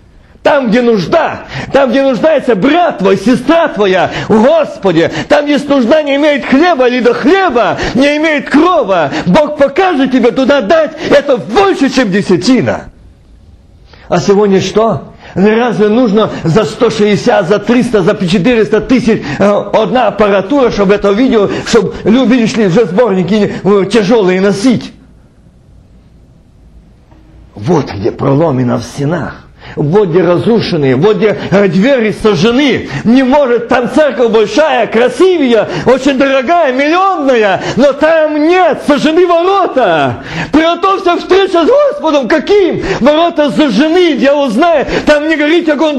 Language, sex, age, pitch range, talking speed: Russian, male, 50-69, 215-315 Hz, 125 wpm